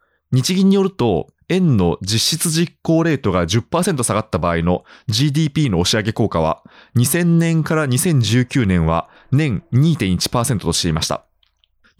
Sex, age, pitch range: male, 20-39, 90-150 Hz